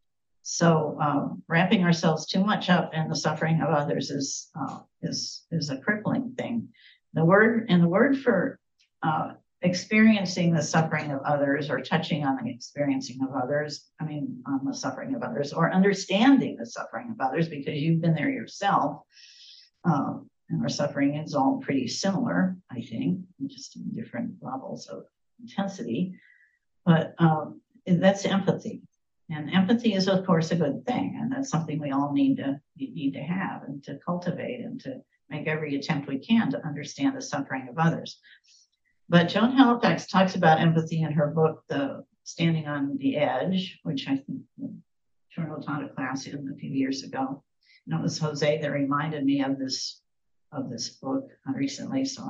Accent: American